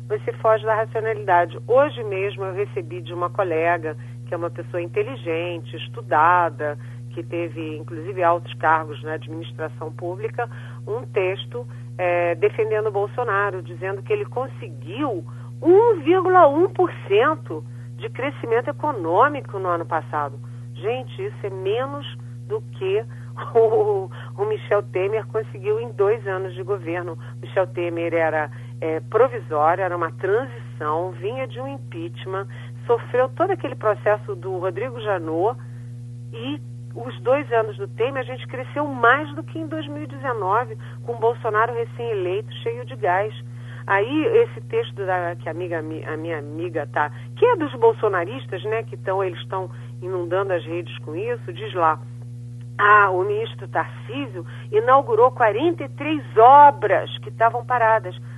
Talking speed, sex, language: 135 wpm, female, Portuguese